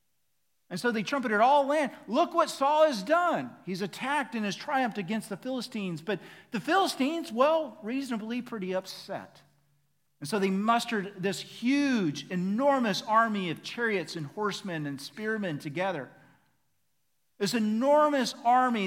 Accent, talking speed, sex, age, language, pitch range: American, 140 wpm, male, 40-59, English, 165-240 Hz